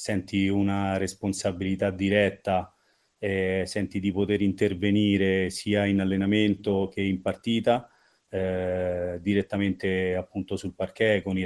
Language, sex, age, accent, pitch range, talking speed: Italian, male, 30-49, native, 95-105 Hz, 115 wpm